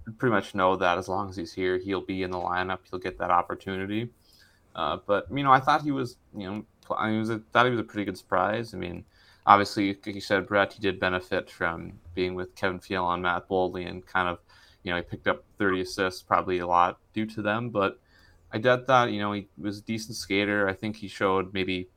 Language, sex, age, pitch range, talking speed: English, male, 20-39, 90-105 Hz, 245 wpm